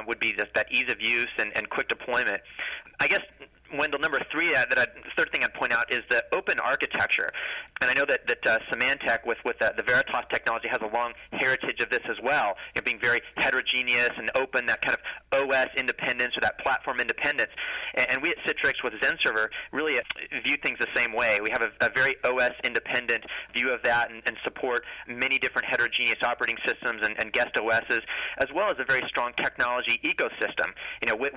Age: 30-49